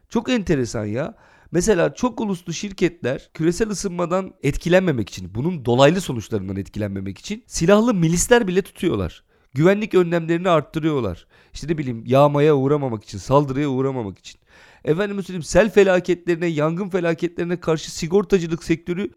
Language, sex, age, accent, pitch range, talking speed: Turkish, male, 40-59, native, 140-200 Hz, 130 wpm